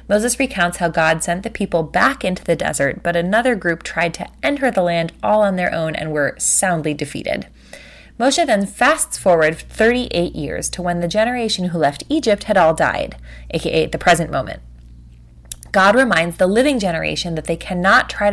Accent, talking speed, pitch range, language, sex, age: American, 185 wpm, 160-210 Hz, English, female, 20-39